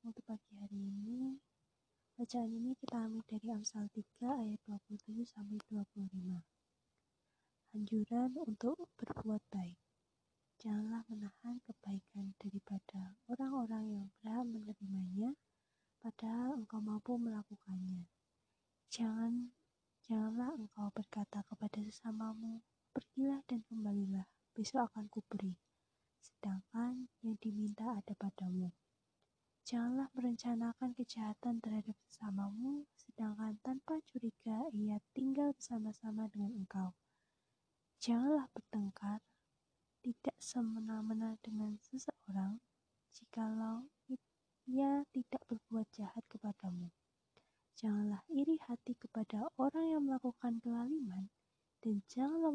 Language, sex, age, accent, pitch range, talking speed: Indonesian, female, 20-39, native, 205-245 Hz, 90 wpm